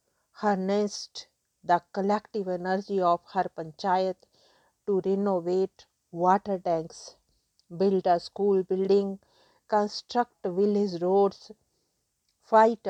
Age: 50-69